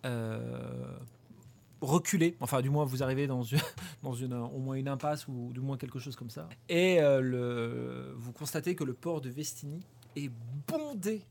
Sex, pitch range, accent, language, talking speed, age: male, 120-150 Hz, French, French, 180 wpm, 30-49